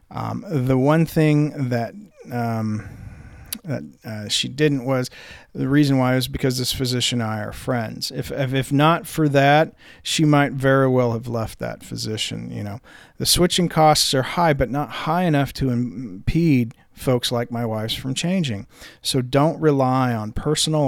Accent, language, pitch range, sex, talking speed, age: American, English, 120-145 Hz, male, 170 wpm, 40-59